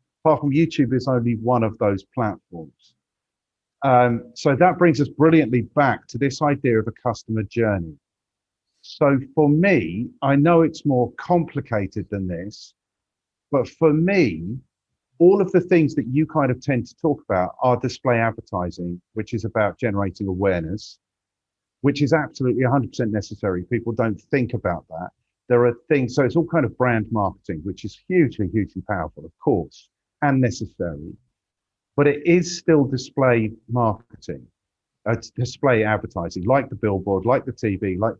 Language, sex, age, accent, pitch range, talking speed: English, male, 50-69, British, 105-140 Hz, 155 wpm